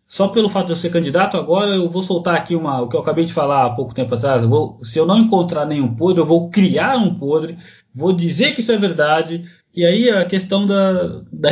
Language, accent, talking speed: Portuguese, Brazilian, 250 wpm